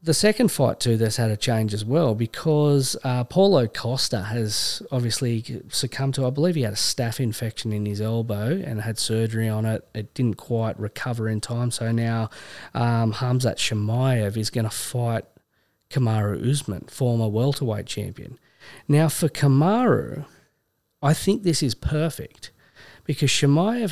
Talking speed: 160 wpm